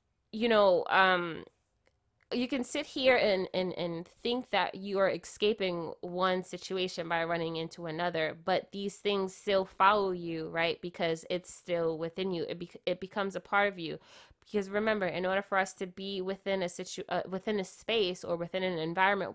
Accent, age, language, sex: American, 20-39, English, female